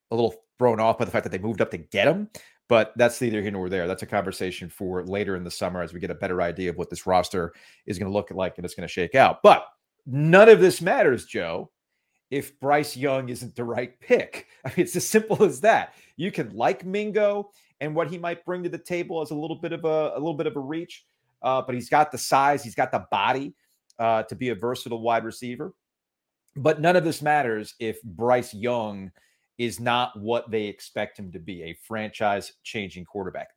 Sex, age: male, 40-59